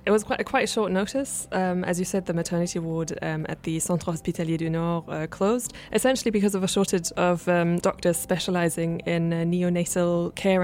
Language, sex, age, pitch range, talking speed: English, female, 20-39, 165-185 Hz, 205 wpm